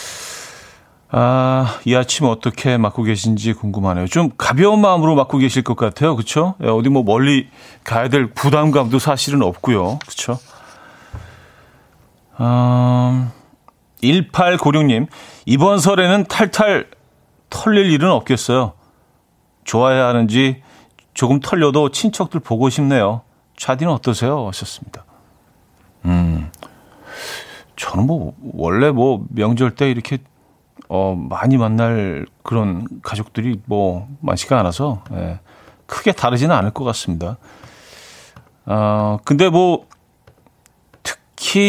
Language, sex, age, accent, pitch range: Korean, male, 40-59, native, 105-140 Hz